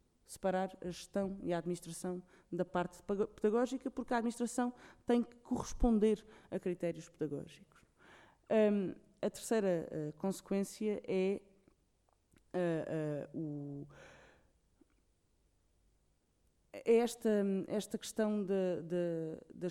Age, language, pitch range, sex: 20-39, Portuguese, 155-200 Hz, female